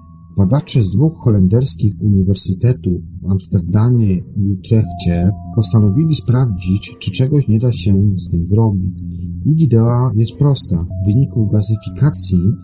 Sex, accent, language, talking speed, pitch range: male, native, Polish, 120 wpm, 90-120 Hz